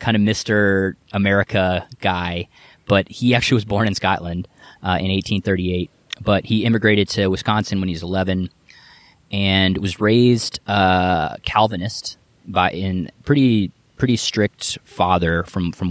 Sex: male